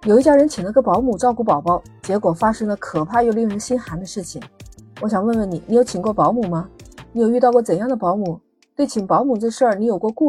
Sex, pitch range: female, 185-245 Hz